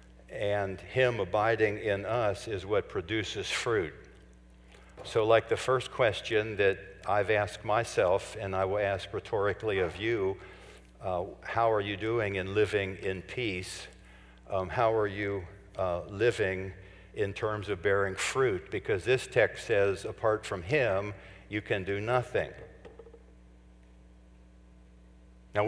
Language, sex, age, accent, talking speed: English, male, 60-79, American, 135 wpm